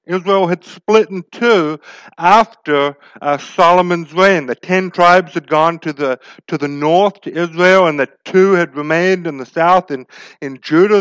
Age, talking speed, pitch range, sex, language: 50-69, 175 wpm, 140-185 Hz, male, English